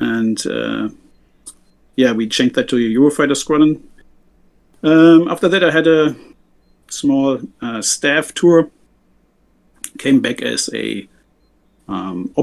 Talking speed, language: 120 wpm, English